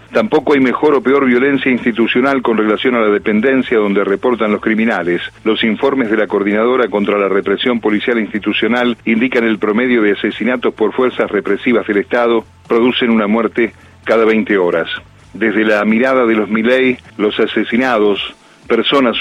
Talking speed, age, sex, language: 160 wpm, 40-59, male, Spanish